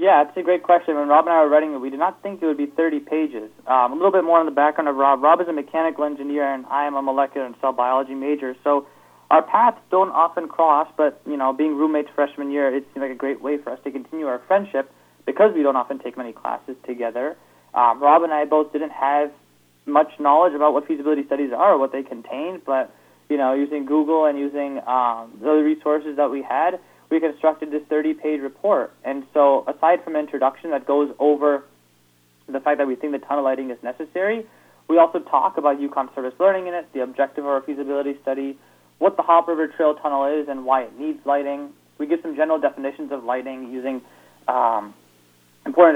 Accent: American